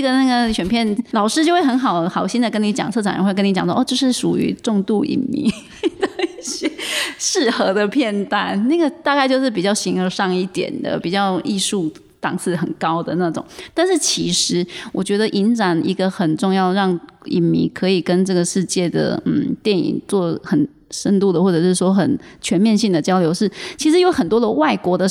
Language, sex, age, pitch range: Chinese, female, 20-39, 175-225 Hz